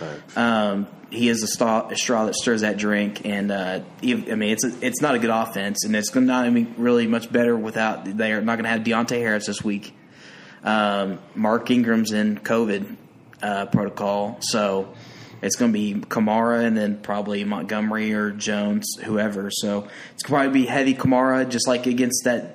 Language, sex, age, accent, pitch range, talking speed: English, male, 20-39, American, 105-130 Hz, 190 wpm